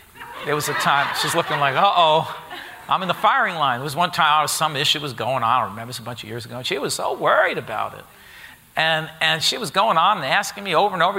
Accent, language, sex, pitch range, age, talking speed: American, English, male, 155-235 Hz, 50-69, 275 wpm